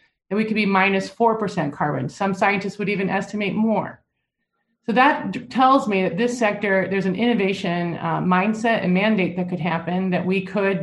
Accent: American